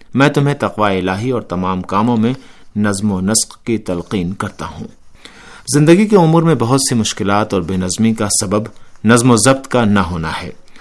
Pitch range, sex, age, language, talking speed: 95-125 Hz, male, 50-69, Urdu, 190 wpm